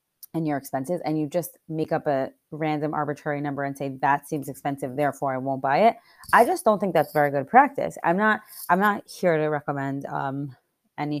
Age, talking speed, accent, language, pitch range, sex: 20-39, 210 wpm, American, English, 140-160 Hz, female